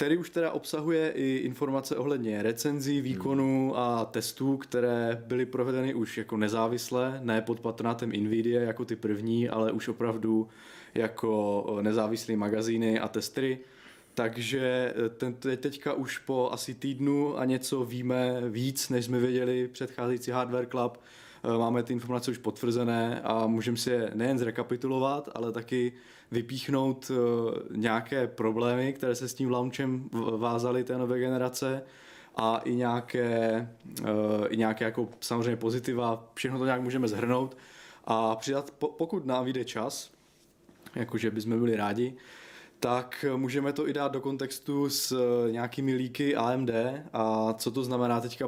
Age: 20-39